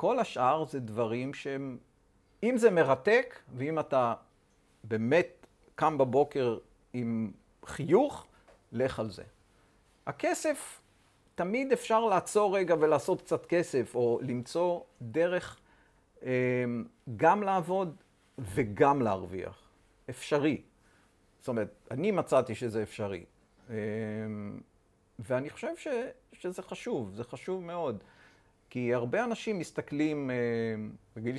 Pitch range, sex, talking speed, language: 110-145 Hz, male, 100 wpm, Hebrew